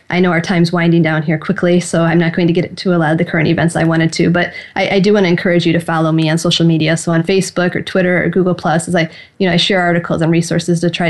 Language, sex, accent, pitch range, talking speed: English, female, American, 160-180 Hz, 305 wpm